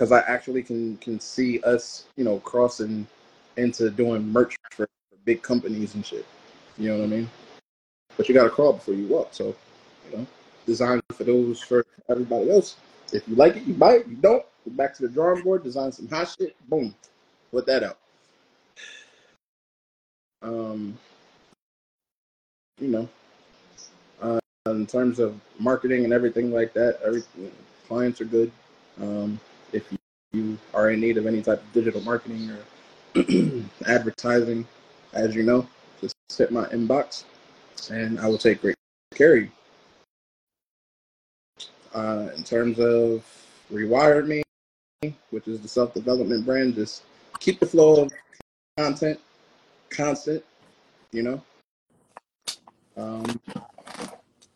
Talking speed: 145 wpm